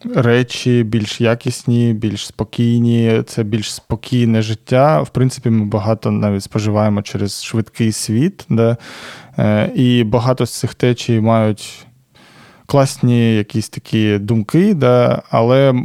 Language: Ukrainian